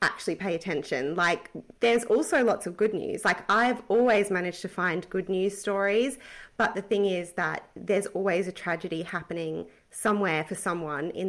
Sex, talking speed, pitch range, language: female, 175 wpm, 185-230 Hz, English